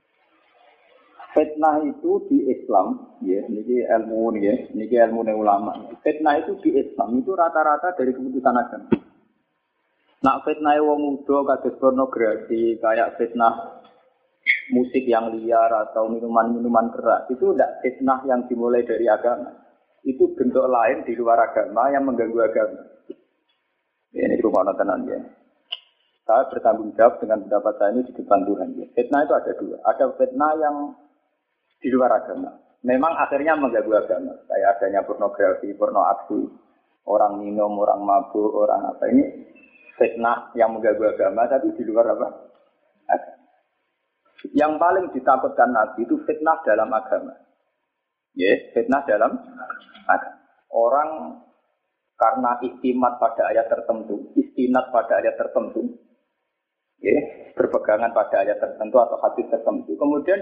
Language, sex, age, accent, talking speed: Indonesian, male, 30-49, native, 125 wpm